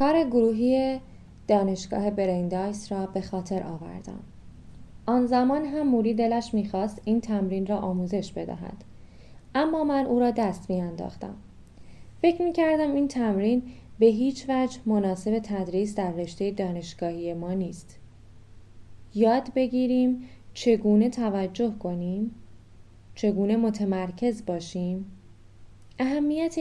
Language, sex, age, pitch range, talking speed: Persian, female, 10-29, 180-230 Hz, 110 wpm